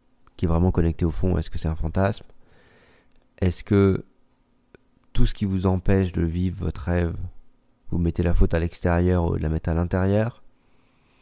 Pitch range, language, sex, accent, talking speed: 85-100 Hz, French, male, French, 180 wpm